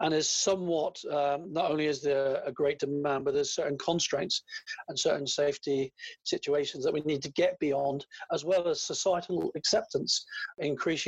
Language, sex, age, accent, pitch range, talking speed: English, male, 40-59, British, 140-195 Hz, 170 wpm